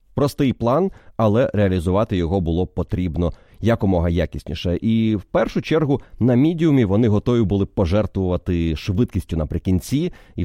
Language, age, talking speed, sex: Ukrainian, 30-49, 140 wpm, male